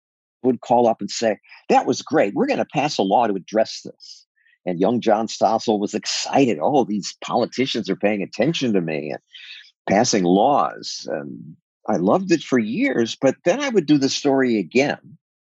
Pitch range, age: 105-175 Hz, 50-69